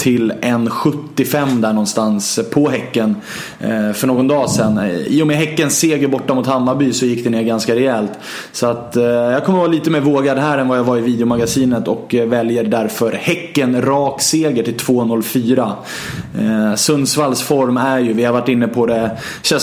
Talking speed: 180 wpm